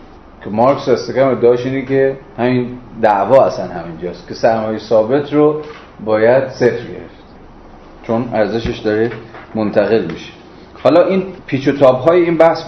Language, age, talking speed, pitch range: Persian, 30-49, 145 wpm, 110-135 Hz